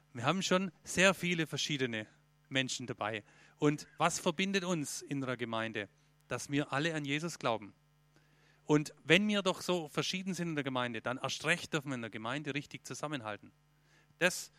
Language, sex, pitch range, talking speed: German, male, 140-165 Hz, 175 wpm